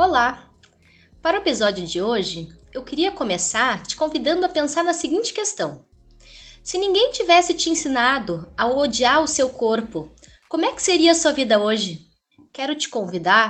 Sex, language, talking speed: female, Portuguese, 165 wpm